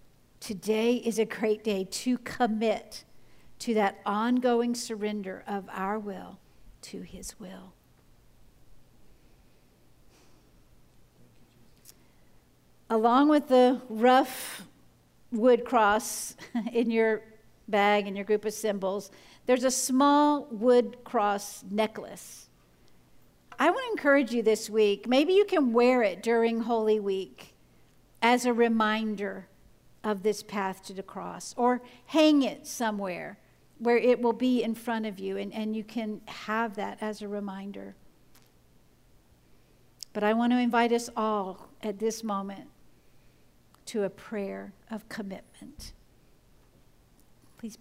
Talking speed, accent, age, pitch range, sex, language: 125 wpm, American, 50-69, 200-240 Hz, female, English